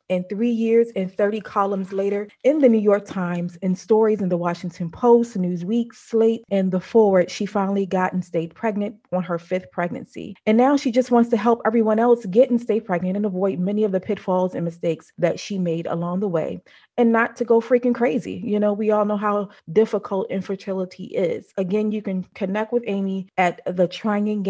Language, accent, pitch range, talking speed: English, American, 180-215 Hz, 205 wpm